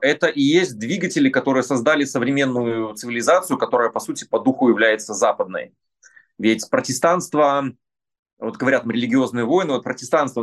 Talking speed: 130 wpm